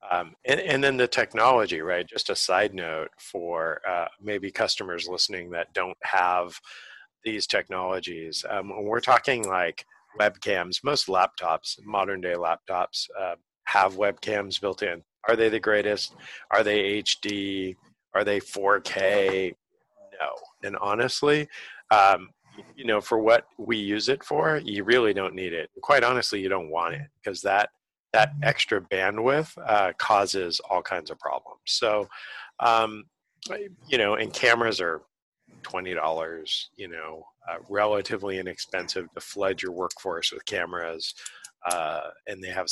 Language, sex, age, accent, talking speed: English, male, 50-69, American, 145 wpm